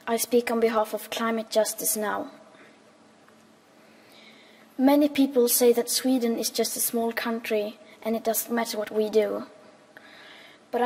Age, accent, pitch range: 20-39, Norwegian, 220-240 Hz